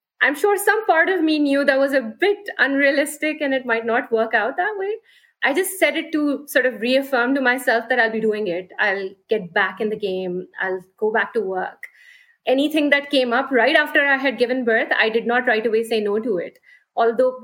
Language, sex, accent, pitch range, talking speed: English, female, Indian, 215-280 Hz, 225 wpm